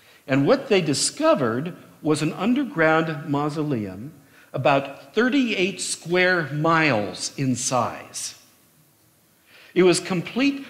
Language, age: English, 50-69